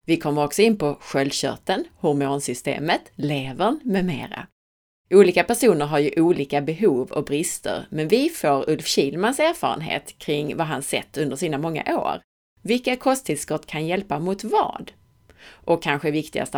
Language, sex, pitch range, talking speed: Swedish, female, 145-210 Hz, 150 wpm